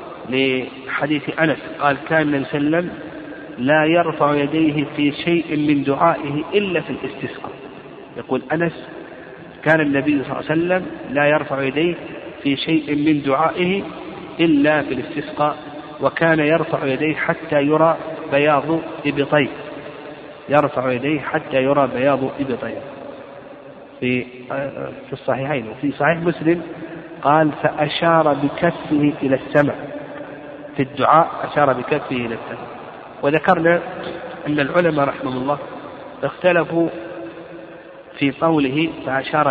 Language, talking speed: Arabic, 115 wpm